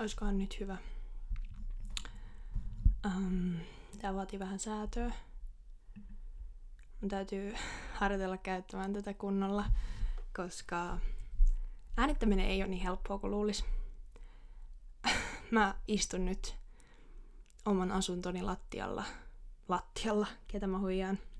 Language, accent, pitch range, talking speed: Finnish, native, 180-205 Hz, 85 wpm